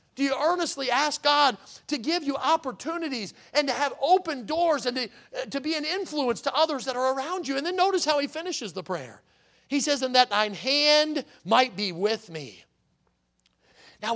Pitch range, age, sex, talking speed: 245-320 Hz, 40-59, male, 190 wpm